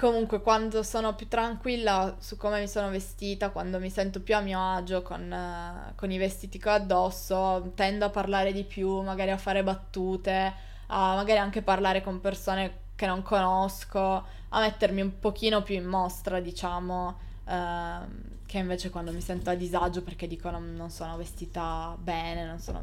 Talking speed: 175 wpm